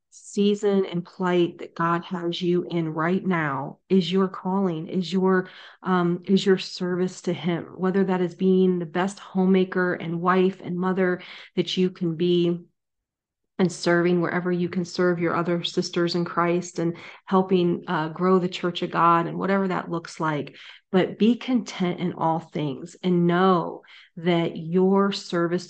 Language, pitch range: English, 175-190 Hz